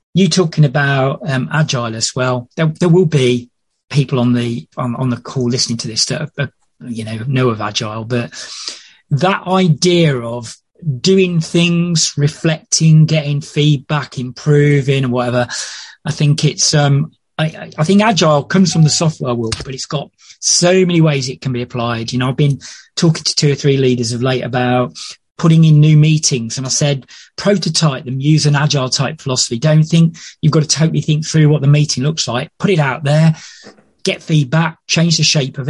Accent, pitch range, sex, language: British, 125-160 Hz, male, English